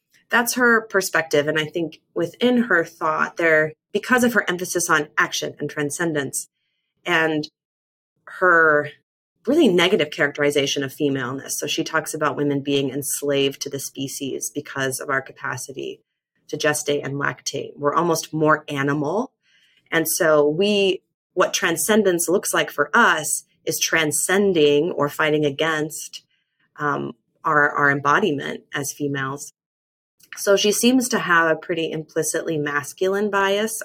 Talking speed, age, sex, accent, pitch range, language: 135 wpm, 30-49, female, American, 145-190 Hz, English